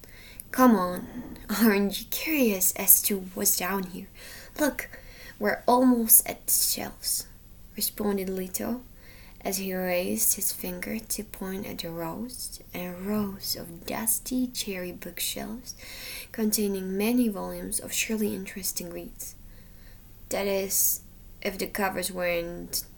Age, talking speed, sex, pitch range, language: 20-39, 125 wpm, female, 160-225 Hz, Slovak